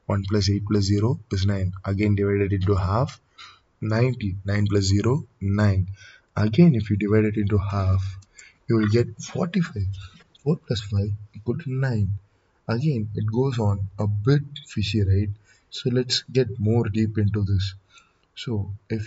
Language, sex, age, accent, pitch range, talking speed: Tamil, male, 20-39, native, 100-120 Hz, 155 wpm